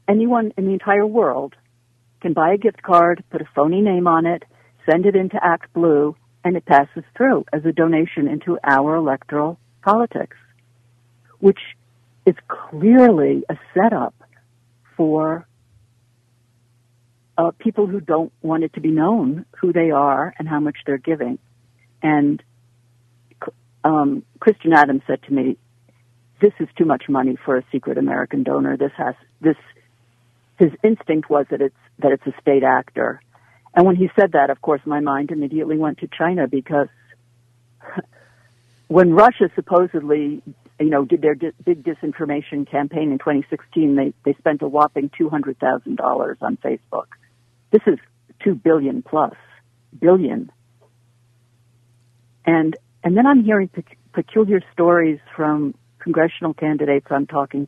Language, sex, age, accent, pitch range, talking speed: English, female, 60-79, American, 120-165 Hz, 150 wpm